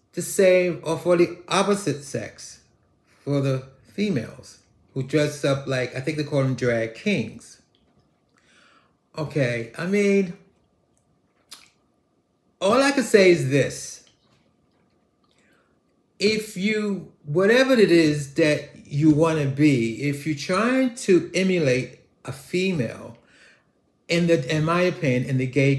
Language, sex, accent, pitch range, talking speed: English, male, American, 130-180 Hz, 125 wpm